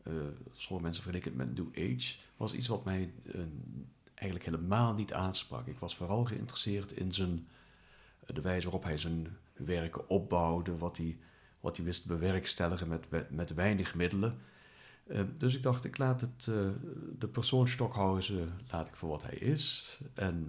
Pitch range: 85-110 Hz